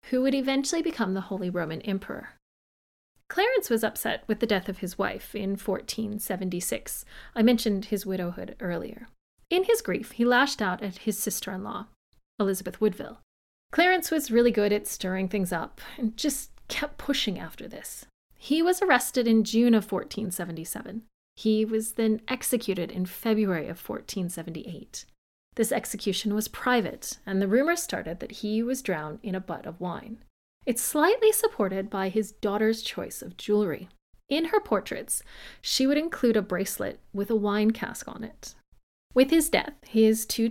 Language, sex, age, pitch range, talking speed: English, female, 30-49, 195-245 Hz, 160 wpm